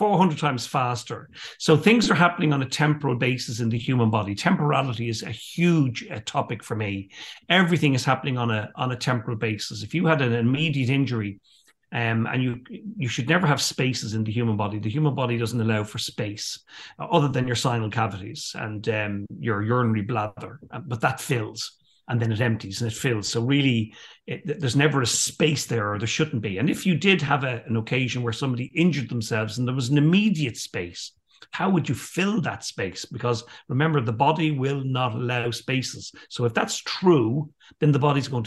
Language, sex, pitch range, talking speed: English, male, 115-150 Hz, 205 wpm